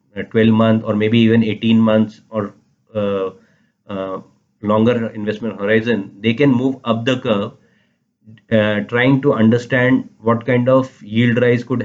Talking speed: 145 wpm